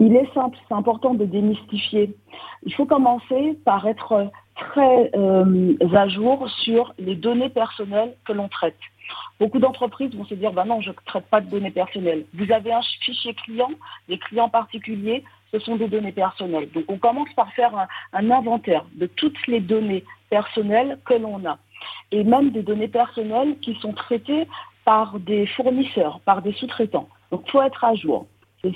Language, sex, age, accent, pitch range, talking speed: French, female, 50-69, French, 190-245 Hz, 180 wpm